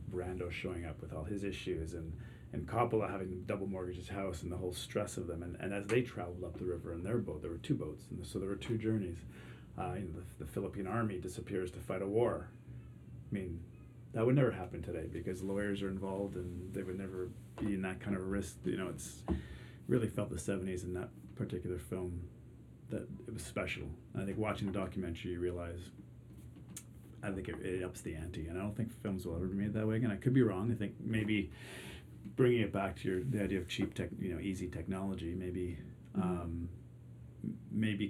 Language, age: English, 30-49